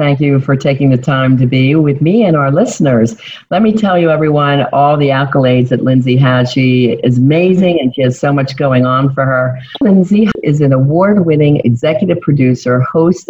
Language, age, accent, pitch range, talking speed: English, 50-69, American, 130-165 Hz, 195 wpm